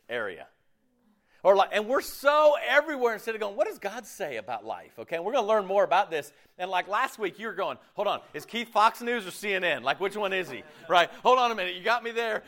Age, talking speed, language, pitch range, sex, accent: 40-59, 250 wpm, English, 155-235 Hz, male, American